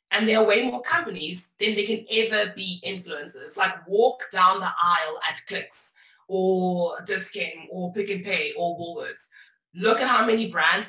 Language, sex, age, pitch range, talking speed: English, female, 20-39, 180-225 Hz, 175 wpm